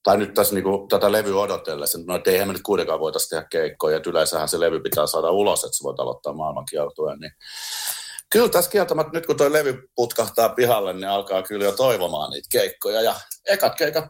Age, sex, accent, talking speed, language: 50-69, male, native, 200 wpm, Finnish